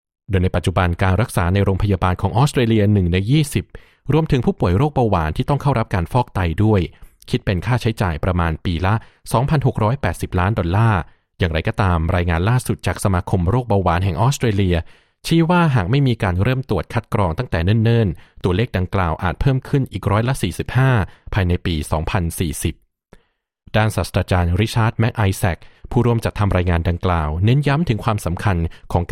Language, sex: Thai, male